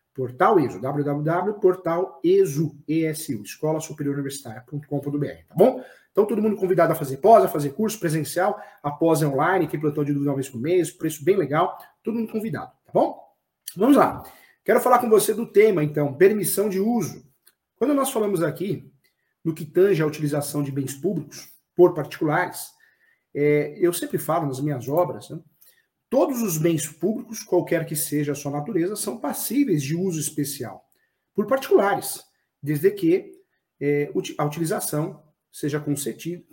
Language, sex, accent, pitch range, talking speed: Portuguese, male, Brazilian, 150-200 Hz, 150 wpm